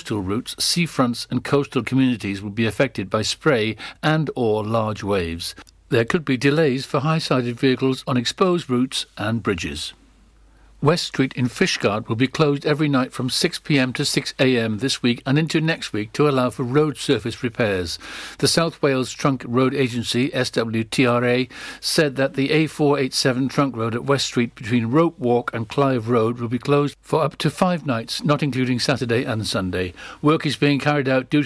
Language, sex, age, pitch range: English, male, 60-79, 120-145 Hz